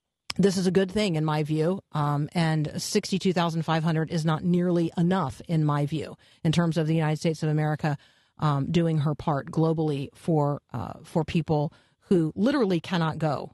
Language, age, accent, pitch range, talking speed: English, 40-59, American, 165-210 Hz, 175 wpm